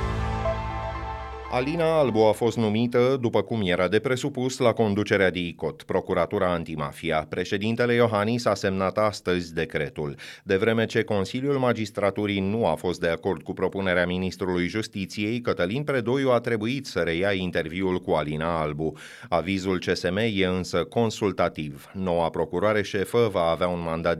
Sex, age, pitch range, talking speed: male, 30-49, 90-110 Hz, 140 wpm